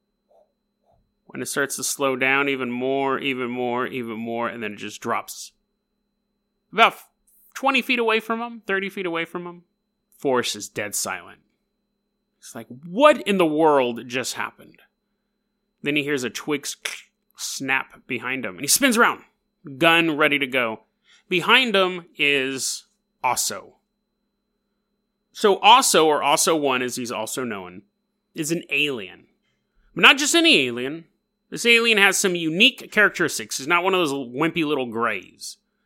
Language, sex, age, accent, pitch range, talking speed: English, male, 30-49, American, 140-215 Hz, 150 wpm